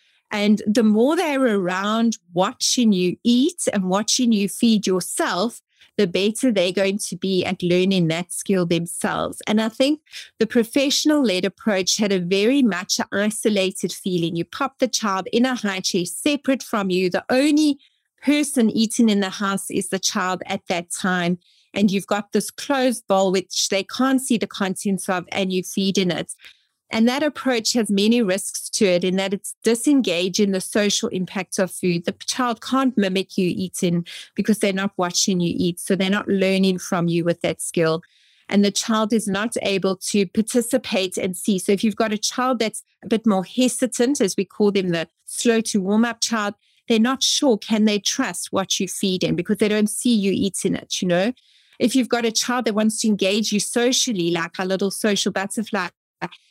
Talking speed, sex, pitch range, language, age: 195 wpm, female, 190-235 Hz, English, 30-49